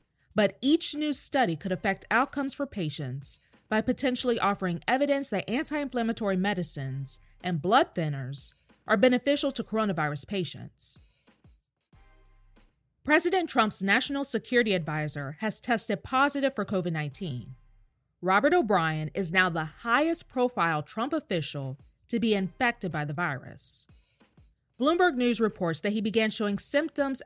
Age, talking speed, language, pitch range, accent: 20-39, 125 wpm, English, 160-255 Hz, American